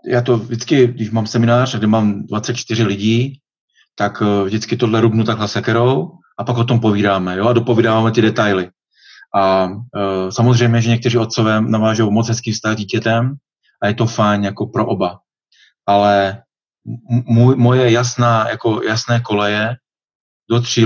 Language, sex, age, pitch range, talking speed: Slovak, male, 30-49, 105-125 Hz, 140 wpm